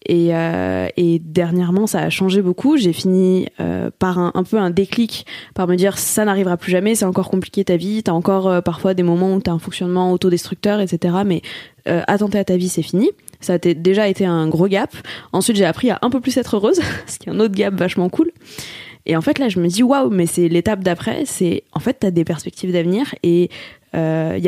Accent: French